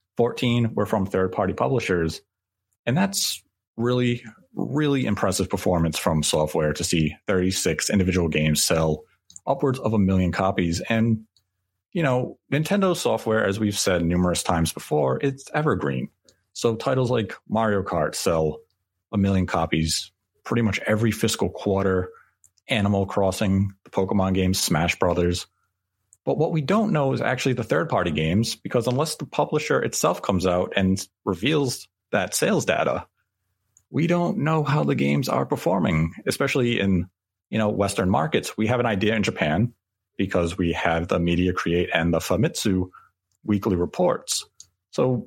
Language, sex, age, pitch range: English, male, 30-49, 90-115 Hz